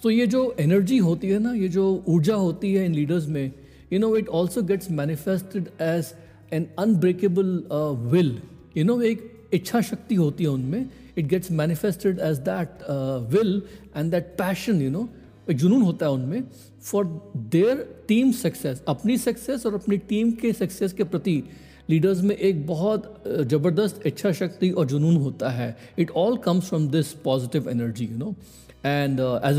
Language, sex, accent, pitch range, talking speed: Hindi, male, native, 140-185 Hz, 170 wpm